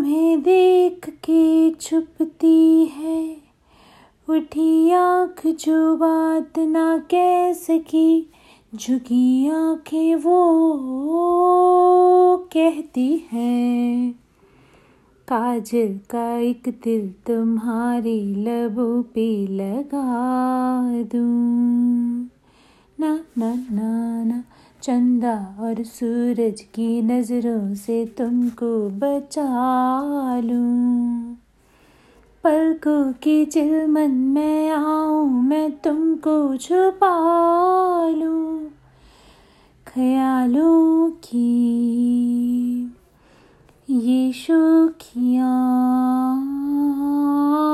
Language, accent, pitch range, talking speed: Hindi, native, 240-320 Hz, 65 wpm